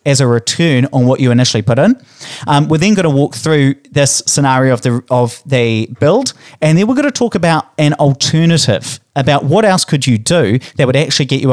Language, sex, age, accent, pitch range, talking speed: English, male, 30-49, Australian, 120-155 Hz, 225 wpm